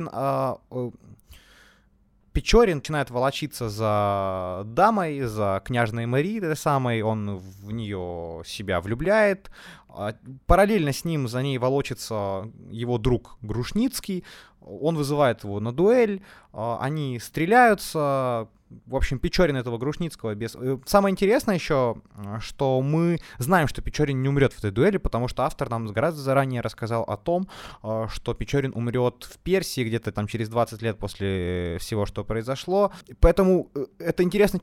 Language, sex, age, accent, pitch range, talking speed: Ukrainian, male, 20-39, native, 115-165 Hz, 130 wpm